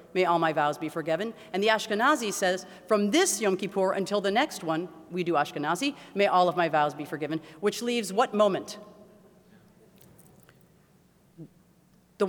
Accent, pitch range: American, 180-240 Hz